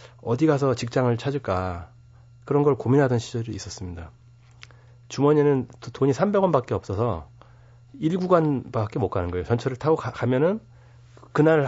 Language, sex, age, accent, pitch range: Korean, male, 30-49, native, 115-145 Hz